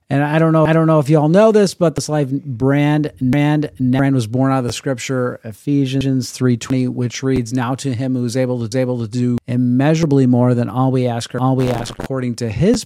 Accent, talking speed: American, 240 wpm